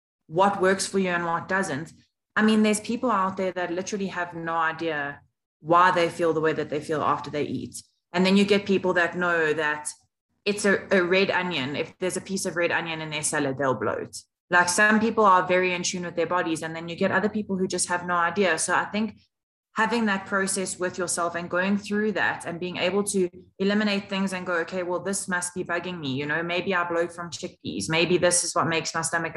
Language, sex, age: English, female, 20-39